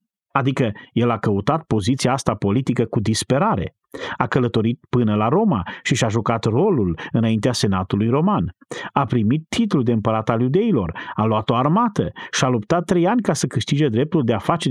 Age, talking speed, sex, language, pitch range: 40-59, 180 wpm, male, Romanian, 110-150 Hz